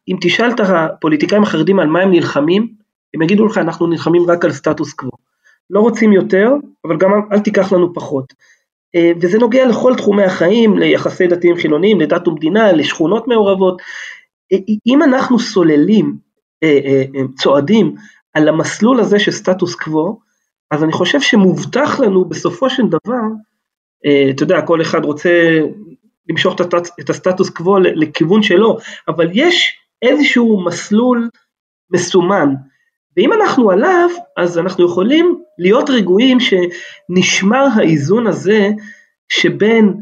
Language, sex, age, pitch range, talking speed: Hebrew, male, 30-49, 170-230 Hz, 125 wpm